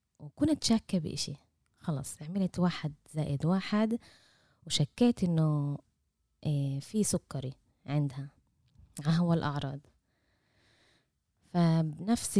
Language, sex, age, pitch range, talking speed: Arabic, female, 20-39, 140-185 Hz, 80 wpm